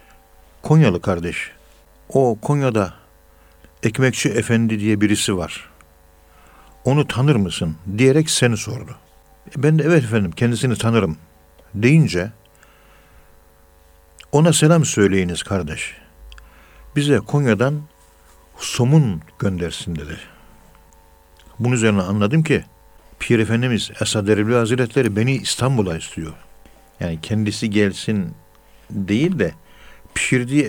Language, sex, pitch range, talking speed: Turkish, male, 90-130 Hz, 95 wpm